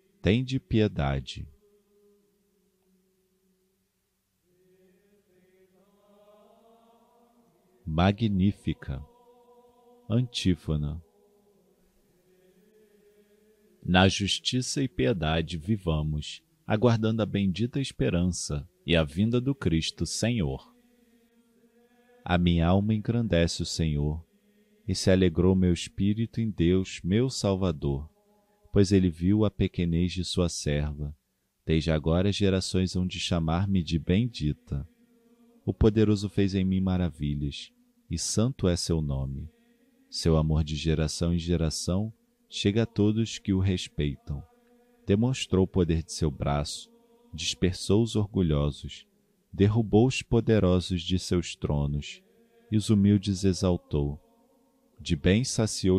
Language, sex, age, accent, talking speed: Portuguese, male, 40-59, Brazilian, 100 wpm